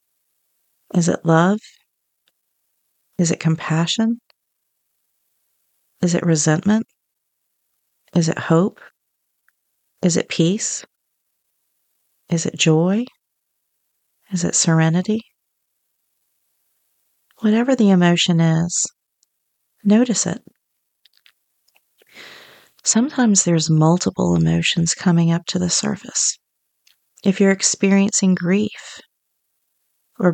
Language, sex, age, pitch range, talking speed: English, female, 40-59, 170-210 Hz, 80 wpm